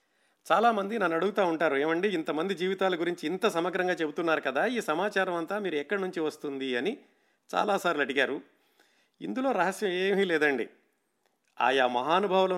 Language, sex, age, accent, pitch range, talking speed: Telugu, male, 50-69, native, 145-175 Hz, 135 wpm